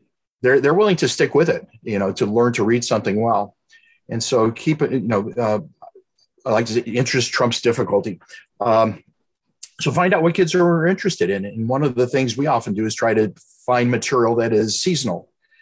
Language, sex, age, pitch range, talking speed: English, male, 50-69, 110-135 Hz, 210 wpm